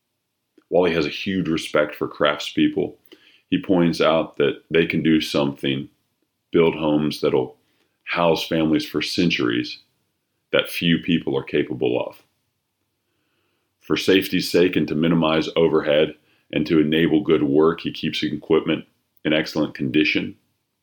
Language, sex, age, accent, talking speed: English, male, 40-59, American, 135 wpm